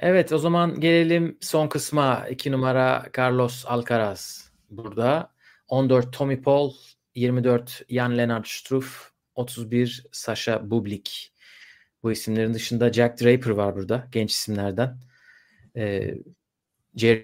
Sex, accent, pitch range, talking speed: male, native, 115-135 Hz, 110 wpm